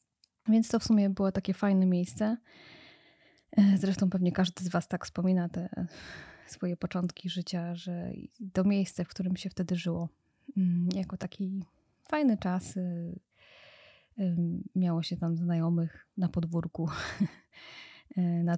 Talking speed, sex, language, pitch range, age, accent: 125 wpm, female, Polish, 175-200 Hz, 20-39, native